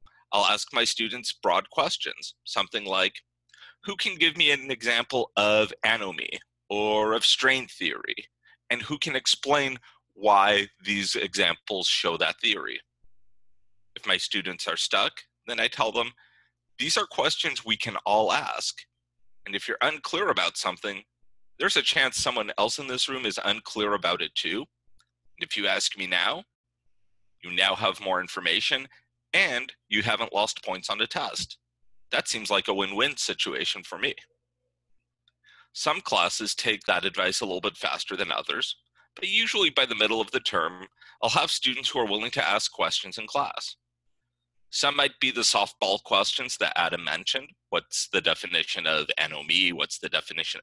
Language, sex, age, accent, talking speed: English, male, 30-49, American, 165 wpm